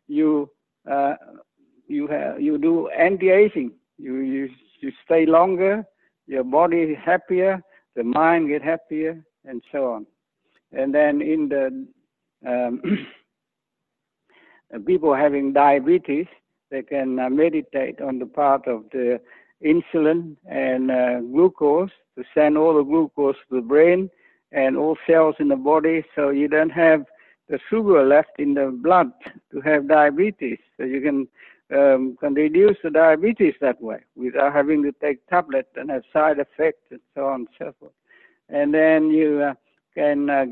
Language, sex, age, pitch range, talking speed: English, male, 60-79, 135-165 Hz, 150 wpm